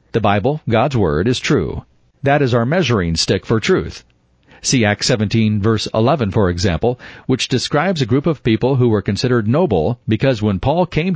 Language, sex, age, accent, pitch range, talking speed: English, male, 40-59, American, 100-130 Hz, 185 wpm